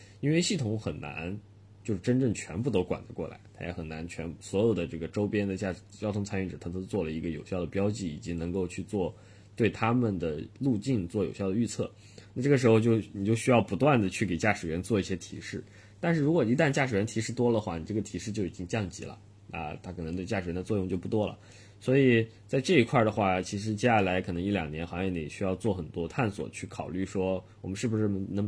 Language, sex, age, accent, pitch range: Chinese, male, 20-39, native, 95-110 Hz